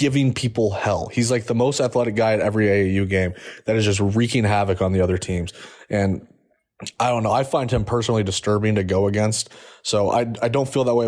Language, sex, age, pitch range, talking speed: English, male, 20-39, 100-120 Hz, 220 wpm